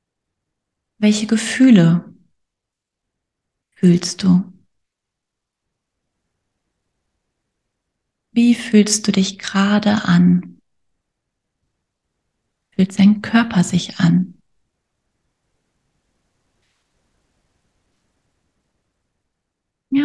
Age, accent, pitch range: 30-49, German, 180-220 Hz